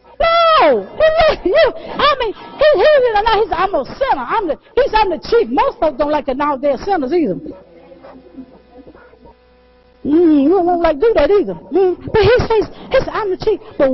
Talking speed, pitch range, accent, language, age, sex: 185 wpm, 285-425 Hz, American, English, 50-69, female